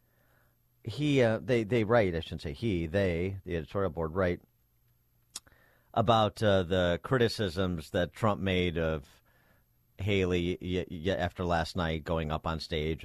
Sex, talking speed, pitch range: male, 145 wpm, 85-125 Hz